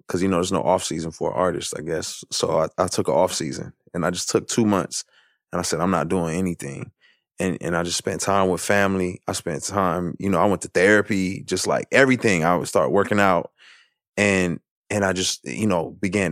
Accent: American